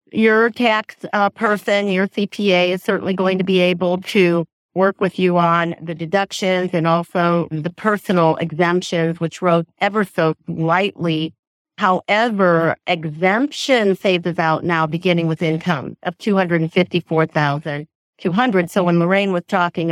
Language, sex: English, female